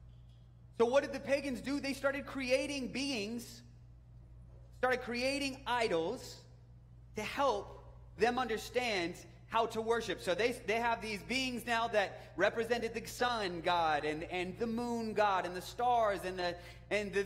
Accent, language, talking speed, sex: American, English, 155 wpm, male